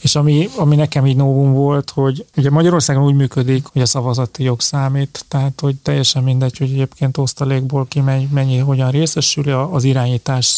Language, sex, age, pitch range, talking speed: Hungarian, male, 30-49, 130-145 Hz, 175 wpm